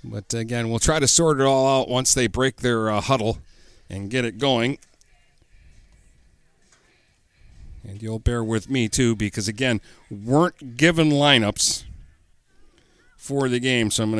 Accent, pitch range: American, 105-135 Hz